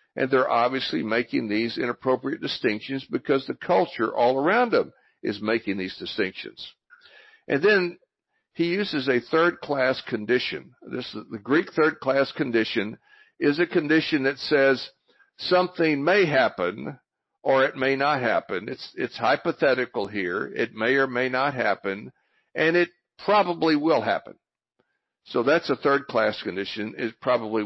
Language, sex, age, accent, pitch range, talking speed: English, male, 60-79, American, 115-165 Hz, 140 wpm